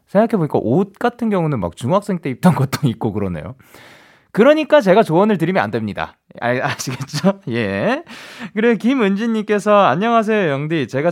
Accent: native